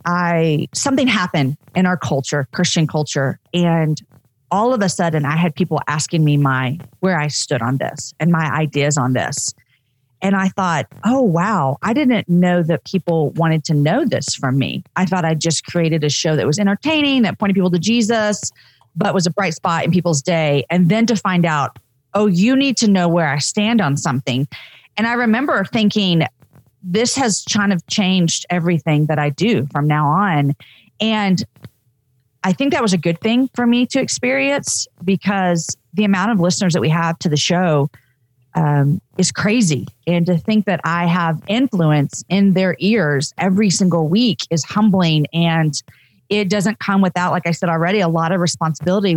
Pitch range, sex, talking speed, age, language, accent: 150-200 Hz, female, 185 wpm, 40-59, English, American